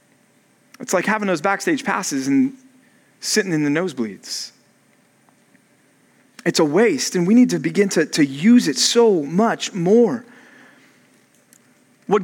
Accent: American